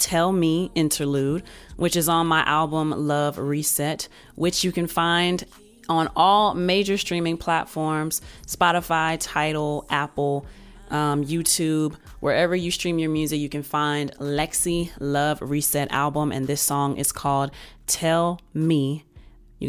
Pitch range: 150-175 Hz